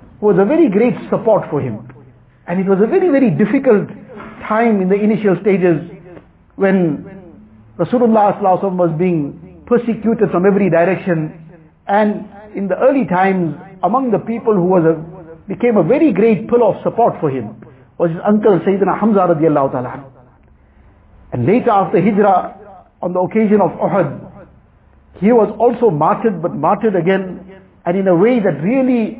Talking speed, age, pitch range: 150 wpm, 50-69, 160-215 Hz